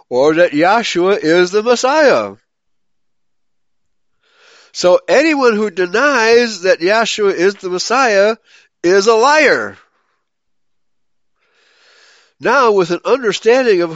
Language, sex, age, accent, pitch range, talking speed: English, male, 60-79, American, 165-240 Hz, 100 wpm